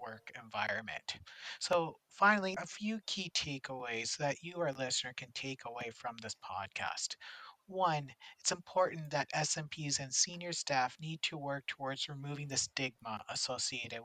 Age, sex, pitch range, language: 40-59, male, 130-170 Hz, English